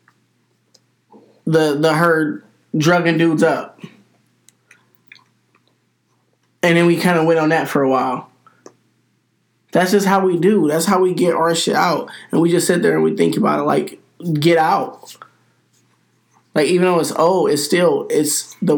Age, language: 20-39, English